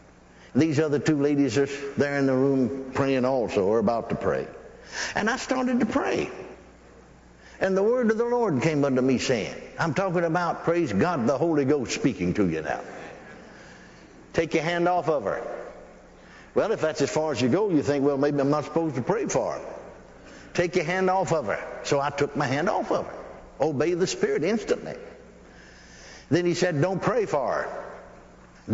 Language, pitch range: English, 140-175 Hz